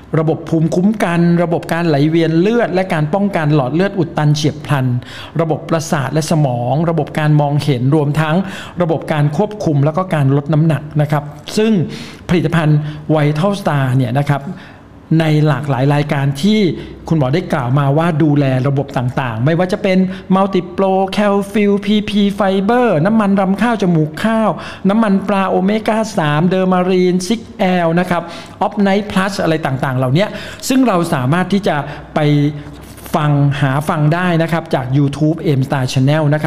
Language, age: Thai, 60-79